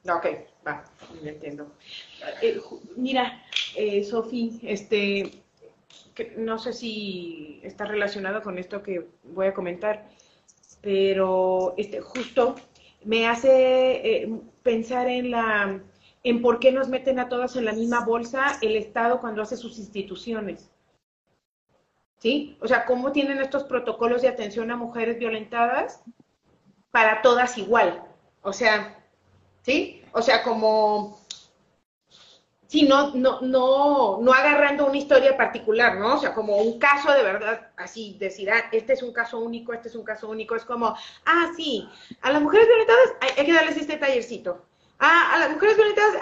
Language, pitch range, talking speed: Spanish, 215-280 Hz, 155 wpm